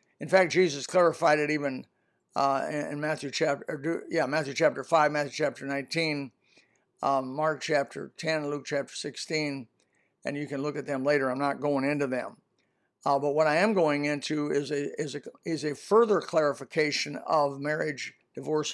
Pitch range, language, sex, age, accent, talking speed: 145-165 Hz, English, male, 60-79, American, 175 wpm